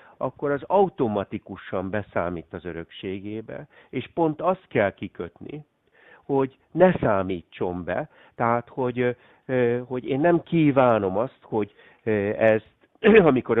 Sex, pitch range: male, 100-130 Hz